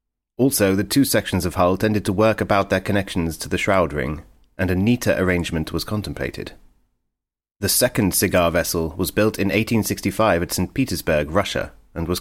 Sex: male